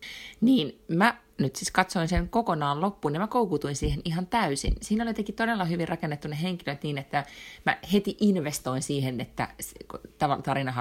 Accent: native